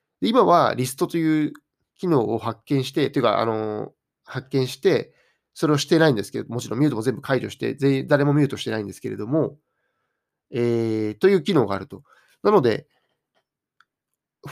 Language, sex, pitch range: Japanese, male, 110-145 Hz